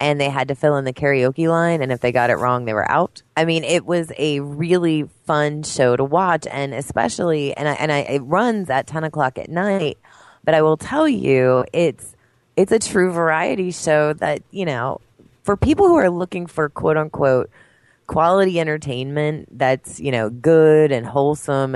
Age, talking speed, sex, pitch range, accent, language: 20-39, 195 wpm, female, 135-170 Hz, American, English